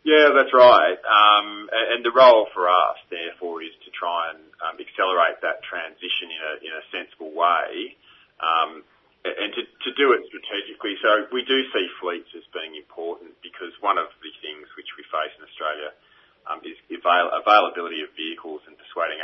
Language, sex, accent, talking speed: English, male, Australian, 170 wpm